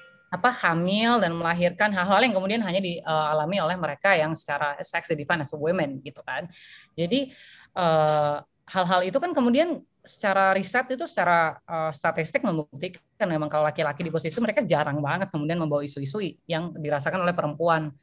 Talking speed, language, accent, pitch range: 155 wpm, Indonesian, native, 160-215 Hz